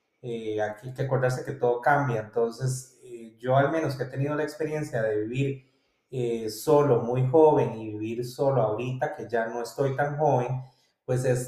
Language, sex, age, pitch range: Spanish, male, 30-49, 120-145 Hz